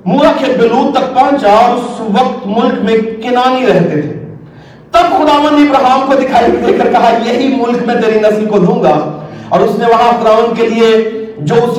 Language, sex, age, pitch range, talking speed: Urdu, male, 50-69, 230-310 Hz, 160 wpm